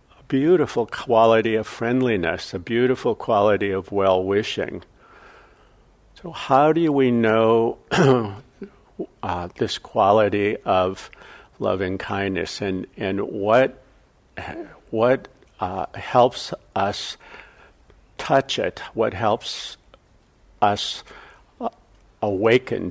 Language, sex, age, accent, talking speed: English, male, 50-69, American, 85 wpm